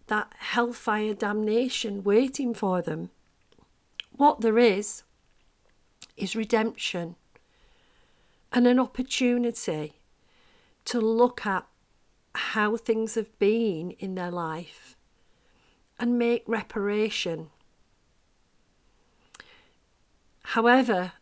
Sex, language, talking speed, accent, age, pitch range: female, English, 80 wpm, British, 50-69, 200-235 Hz